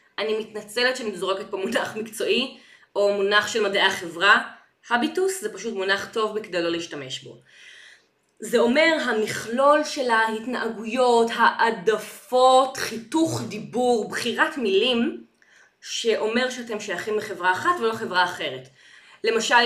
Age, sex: 20-39, female